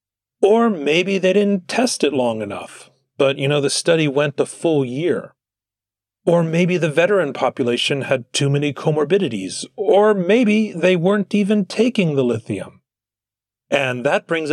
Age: 40-59